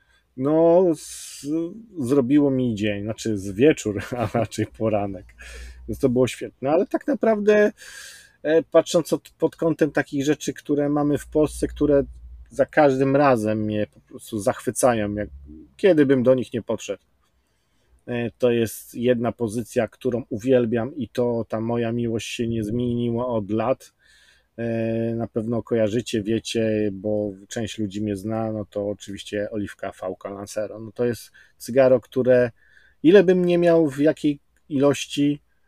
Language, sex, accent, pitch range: Polish, male, native, 105-140 Hz